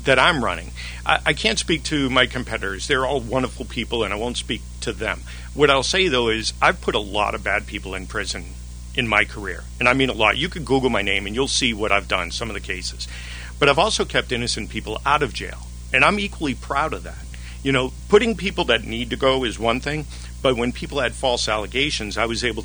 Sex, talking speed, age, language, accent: male, 245 wpm, 50-69, English, American